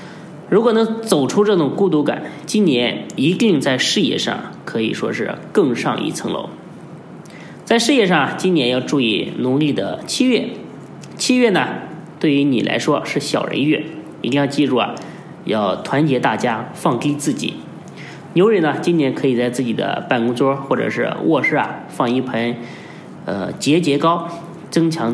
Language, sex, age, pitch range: Chinese, male, 20-39, 130-175 Hz